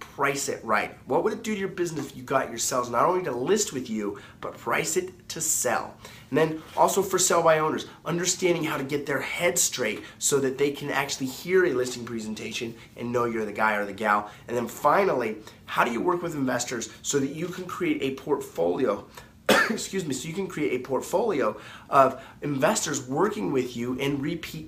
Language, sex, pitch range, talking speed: English, male, 120-150 Hz, 215 wpm